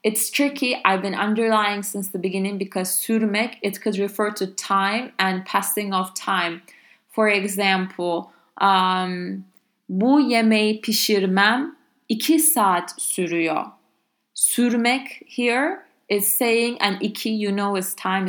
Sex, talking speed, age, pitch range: female, 125 wpm, 20-39, 190-230 Hz